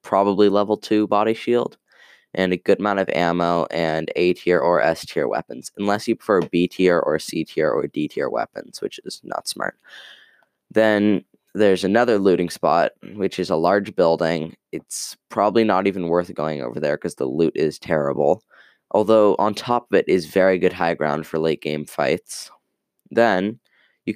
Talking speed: 180 wpm